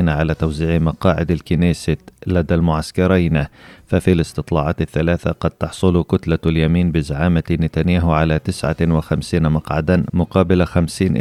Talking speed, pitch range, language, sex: 105 wpm, 80-90 Hz, Arabic, male